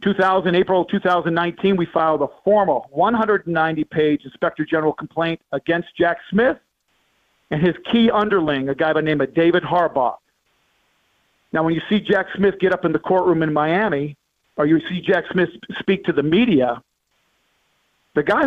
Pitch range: 160-200 Hz